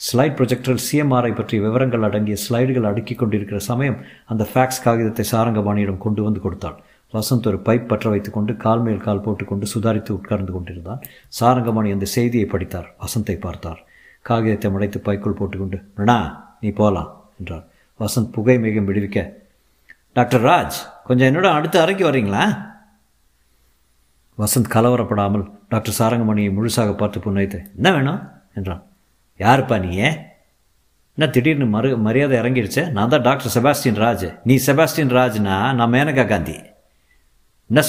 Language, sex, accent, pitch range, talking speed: Tamil, male, native, 100-125 Hz, 130 wpm